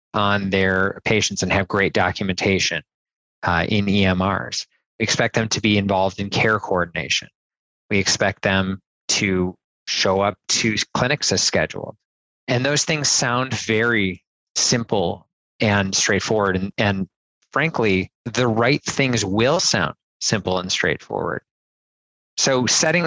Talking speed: 130 wpm